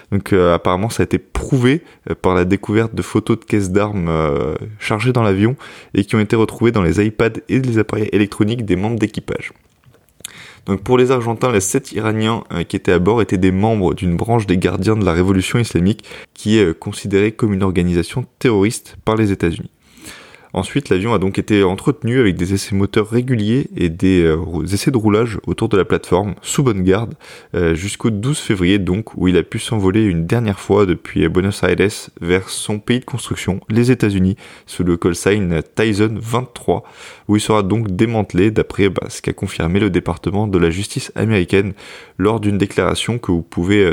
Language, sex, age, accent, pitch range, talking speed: French, male, 20-39, French, 90-110 Hz, 195 wpm